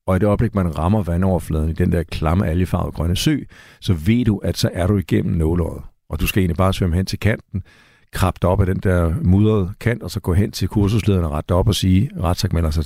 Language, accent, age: Danish, native, 60-79